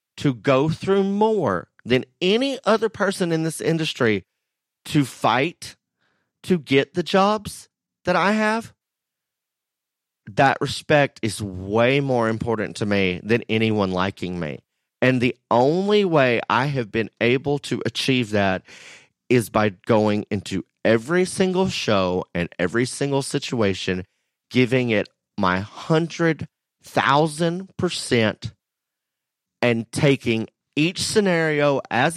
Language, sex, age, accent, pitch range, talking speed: English, male, 30-49, American, 115-160 Hz, 120 wpm